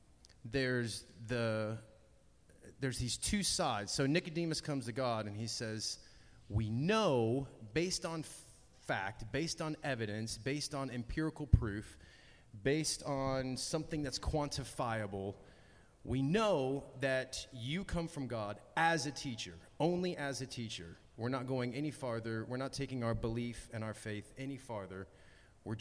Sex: male